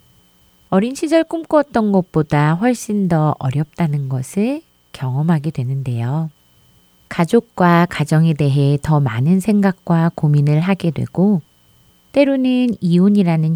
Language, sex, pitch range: Korean, female, 130-185 Hz